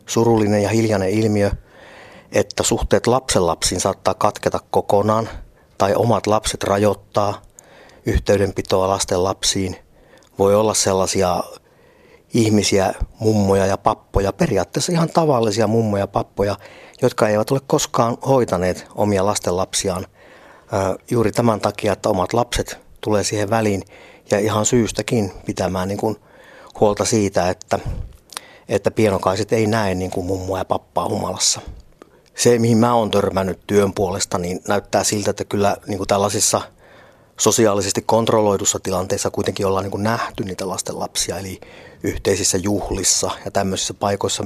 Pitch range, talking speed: 95-115 Hz, 125 wpm